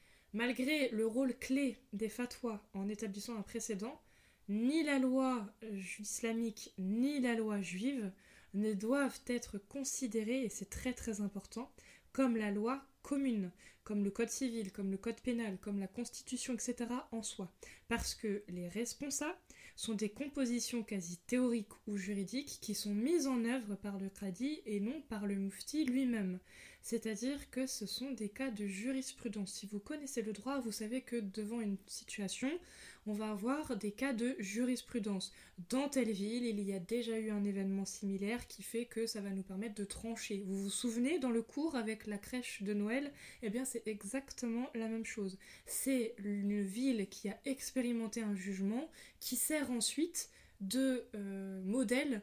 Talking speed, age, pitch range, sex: 170 wpm, 20-39, 205-255 Hz, female